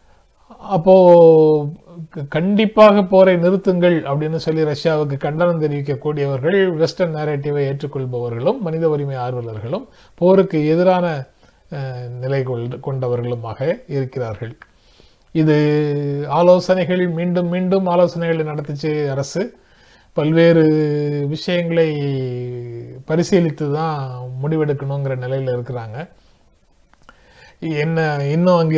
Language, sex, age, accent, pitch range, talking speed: Tamil, male, 30-49, native, 135-170 Hz, 80 wpm